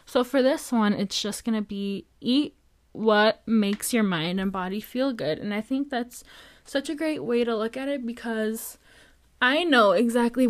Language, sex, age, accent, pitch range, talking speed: English, female, 20-39, American, 205-245 Hz, 195 wpm